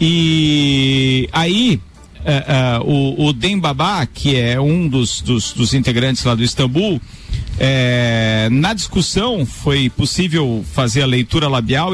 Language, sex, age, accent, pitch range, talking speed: Portuguese, male, 50-69, Brazilian, 130-180 Hz, 130 wpm